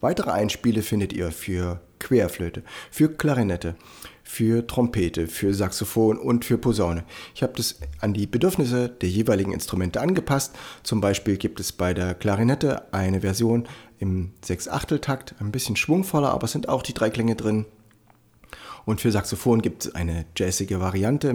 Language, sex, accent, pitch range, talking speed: German, male, German, 90-120 Hz, 155 wpm